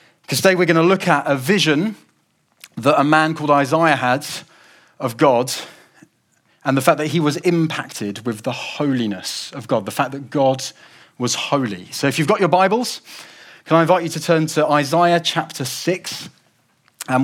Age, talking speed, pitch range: 30-49, 180 wpm, 130-165 Hz